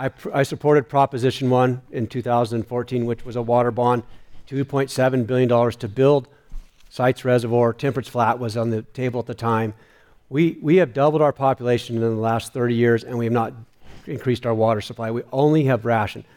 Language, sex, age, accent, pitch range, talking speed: English, male, 50-69, American, 120-150 Hz, 185 wpm